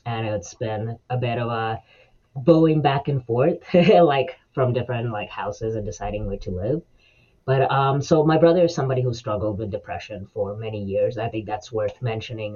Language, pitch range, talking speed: English, 110-150 Hz, 190 wpm